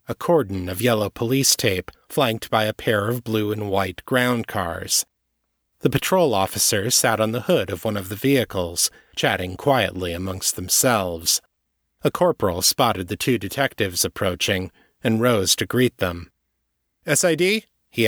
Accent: American